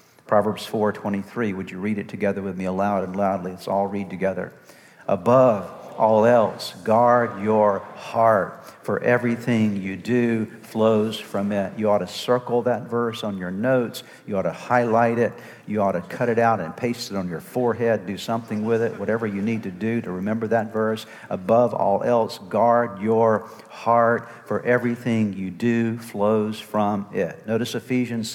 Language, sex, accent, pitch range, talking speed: English, male, American, 100-120 Hz, 175 wpm